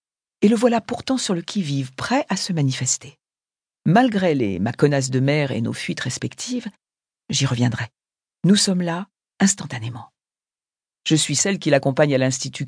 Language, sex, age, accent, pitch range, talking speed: French, female, 50-69, French, 130-180 Hz, 155 wpm